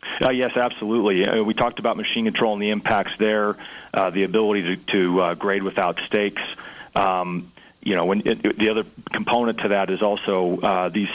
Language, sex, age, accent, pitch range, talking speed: English, male, 40-59, American, 95-105 Hz, 195 wpm